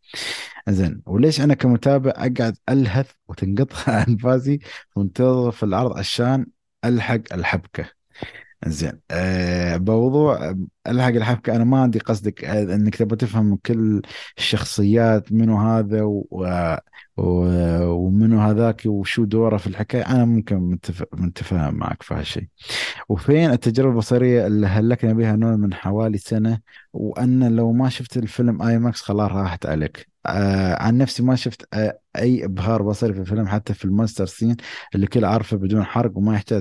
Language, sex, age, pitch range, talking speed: Arabic, male, 20-39, 95-115 Hz, 140 wpm